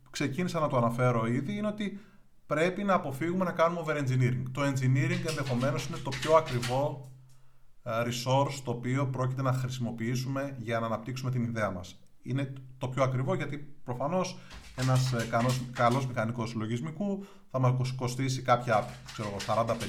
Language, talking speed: Greek, 150 wpm